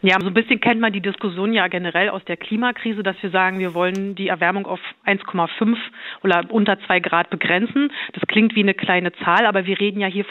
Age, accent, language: 40-59, German, German